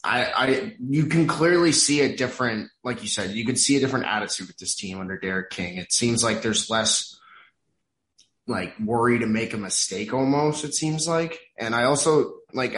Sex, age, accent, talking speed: male, 20-39, American, 195 wpm